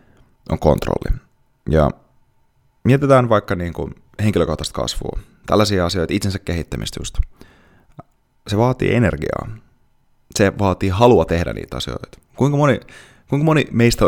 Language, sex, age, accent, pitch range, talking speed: Finnish, male, 30-49, native, 85-115 Hz, 115 wpm